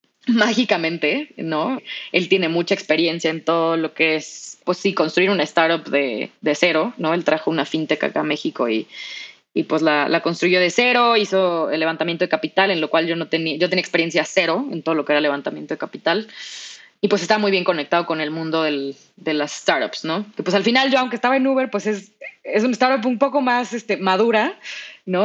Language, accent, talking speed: Spanish, Mexican, 220 wpm